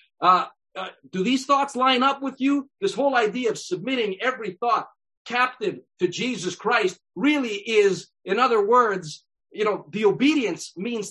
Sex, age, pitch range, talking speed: male, 40-59, 190-275 Hz, 160 wpm